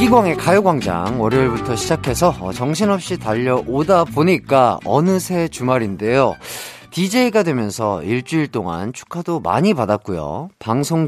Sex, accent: male, native